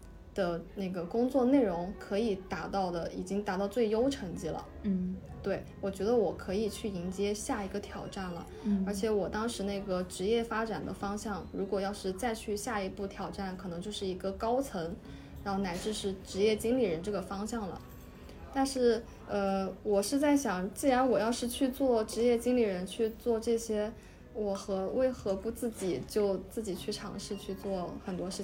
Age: 20-39